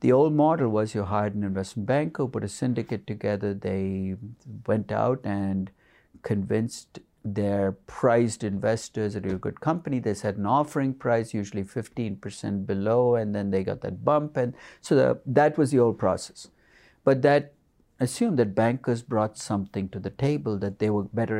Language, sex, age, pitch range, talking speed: English, male, 50-69, 105-130 Hz, 170 wpm